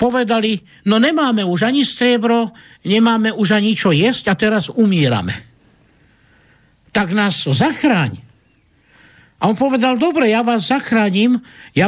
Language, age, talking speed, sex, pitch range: Slovak, 50-69, 125 wpm, male, 185-245 Hz